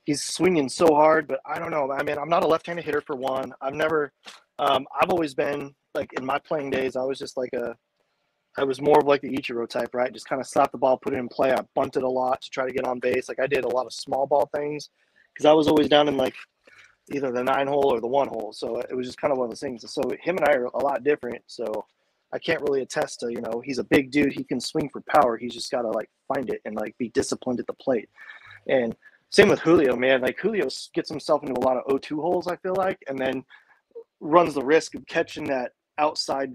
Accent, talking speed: American, 265 wpm